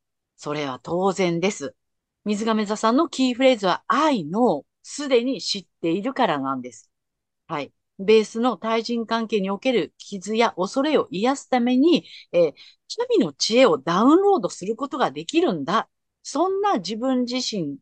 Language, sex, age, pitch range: Japanese, female, 50-69, 175-280 Hz